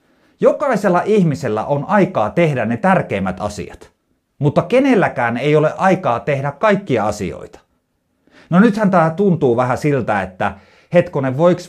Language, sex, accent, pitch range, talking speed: Finnish, male, native, 120-190 Hz, 130 wpm